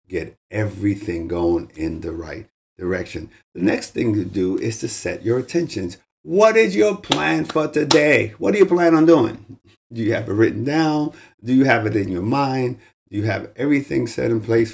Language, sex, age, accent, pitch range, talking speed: English, male, 50-69, American, 105-155 Hz, 200 wpm